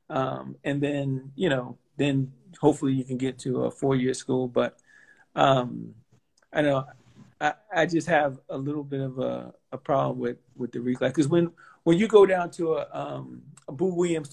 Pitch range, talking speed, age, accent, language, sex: 140-185 Hz, 195 wpm, 40-59, American, English, male